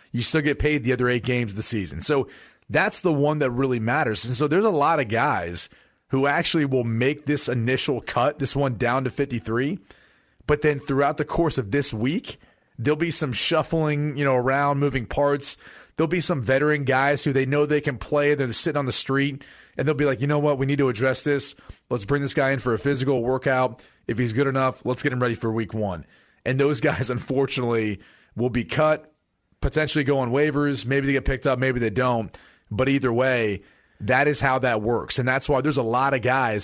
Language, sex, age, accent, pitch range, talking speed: English, male, 30-49, American, 120-145 Hz, 225 wpm